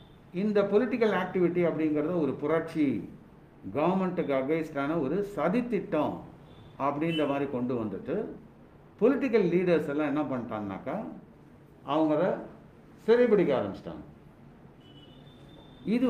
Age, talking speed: 60-79, 85 wpm